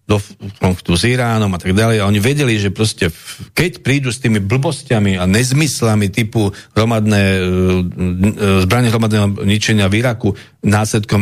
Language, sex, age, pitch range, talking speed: Slovak, male, 50-69, 100-125 Hz, 145 wpm